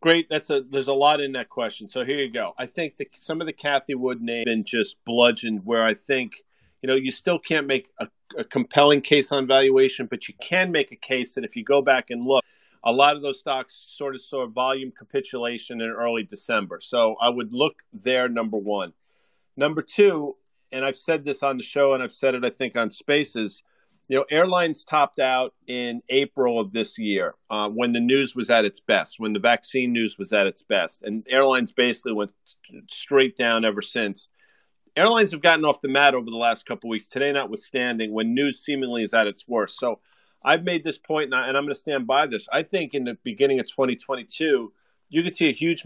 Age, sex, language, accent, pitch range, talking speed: 40-59, male, English, American, 115-140 Hz, 220 wpm